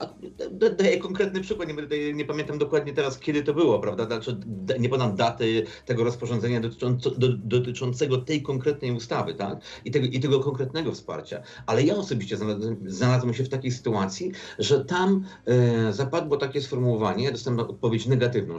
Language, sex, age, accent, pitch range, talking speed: Polish, male, 50-69, native, 120-170 Hz, 160 wpm